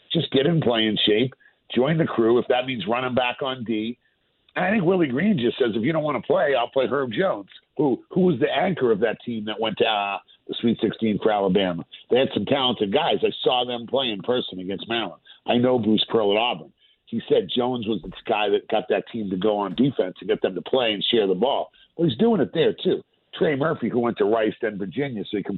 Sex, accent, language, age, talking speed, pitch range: male, American, English, 50-69, 255 wpm, 115-140 Hz